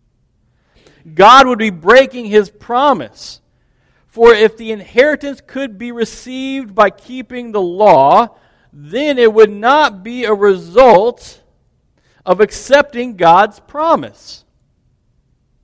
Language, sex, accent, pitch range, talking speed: English, male, American, 175-245 Hz, 105 wpm